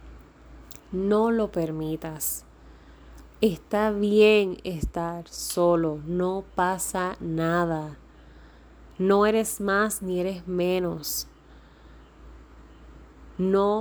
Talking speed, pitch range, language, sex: 75 wpm, 180-235 Hz, Spanish, female